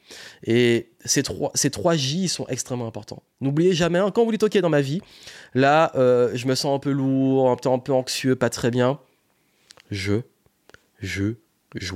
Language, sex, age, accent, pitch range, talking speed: French, male, 20-39, French, 115-155 Hz, 190 wpm